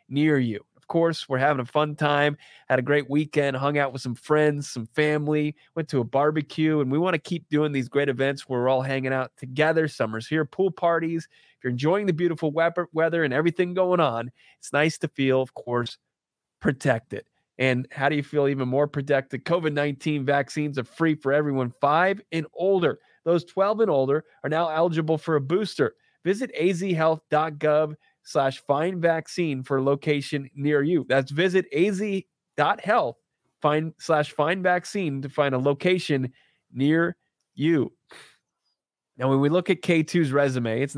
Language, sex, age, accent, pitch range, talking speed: English, male, 30-49, American, 135-165 Hz, 170 wpm